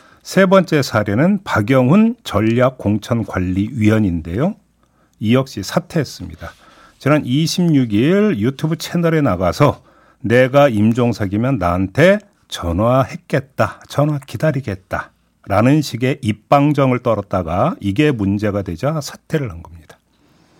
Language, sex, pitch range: Korean, male, 110-180 Hz